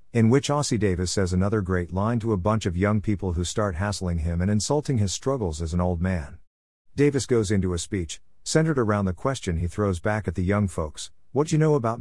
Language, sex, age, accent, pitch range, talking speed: English, male, 50-69, American, 90-110 Hz, 230 wpm